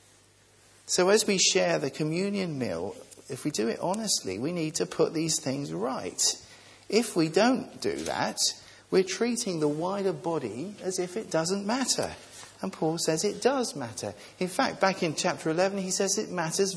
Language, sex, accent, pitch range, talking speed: English, male, British, 135-210 Hz, 180 wpm